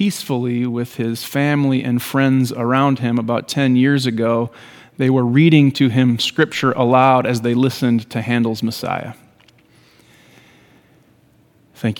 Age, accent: 30-49, American